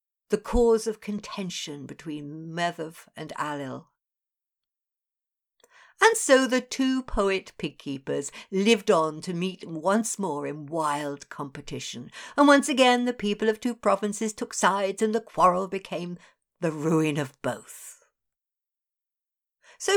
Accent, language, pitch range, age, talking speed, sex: British, English, 175-295 Hz, 60-79, 130 wpm, female